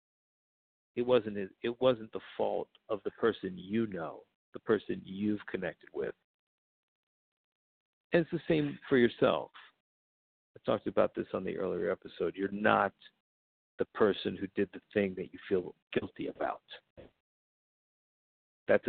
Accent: American